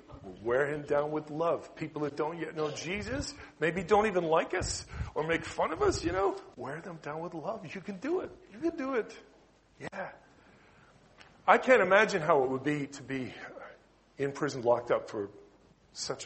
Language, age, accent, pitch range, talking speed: English, 40-59, American, 140-210 Hz, 190 wpm